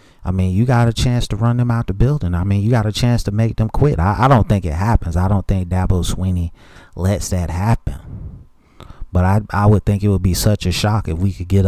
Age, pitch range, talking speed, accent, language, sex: 30-49, 90-105 Hz, 260 wpm, American, English, male